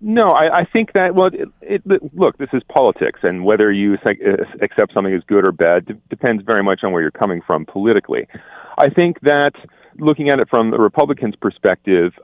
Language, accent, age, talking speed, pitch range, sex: English, American, 40-59, 210 wpm, 100-145 Hz, male